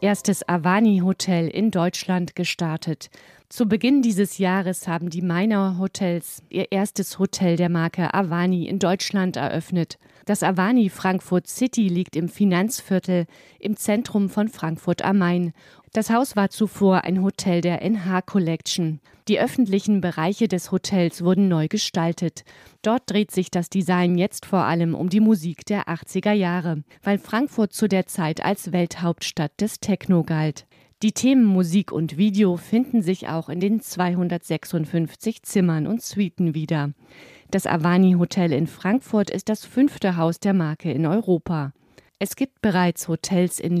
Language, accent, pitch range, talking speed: German, German, 170-200 Hz, 150 wpm